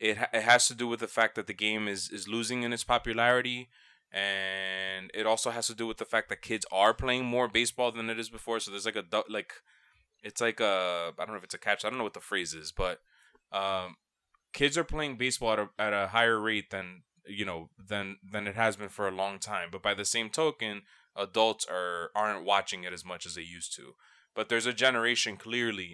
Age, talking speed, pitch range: 20-39, 235 wpm, 100-115 Hz